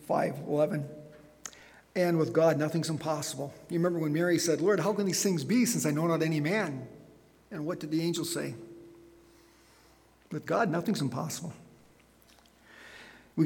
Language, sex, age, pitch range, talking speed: English, male, 50-69, 145-170 Hz, 155 wpm